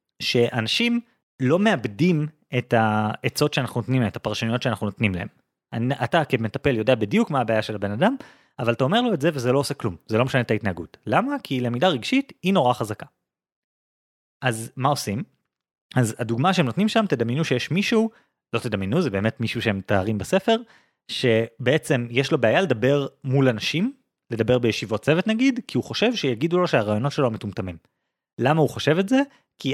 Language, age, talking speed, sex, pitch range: Hebrew, 30-49, 165 wpm, male, 110-155 Hz